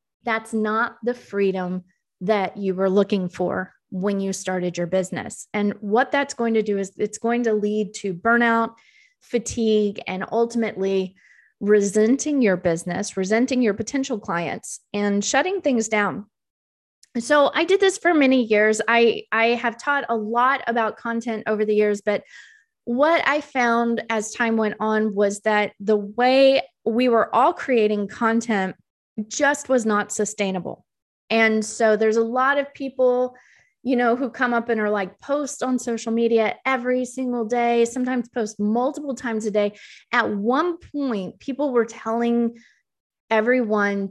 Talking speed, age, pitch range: 155 wpm, 20-39, 205-245 Hz